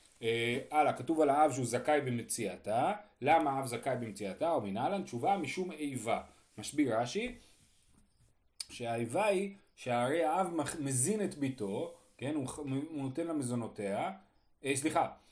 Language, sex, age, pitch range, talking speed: Hebrew, male, 30-49, 120-175 Hz, 145 wpm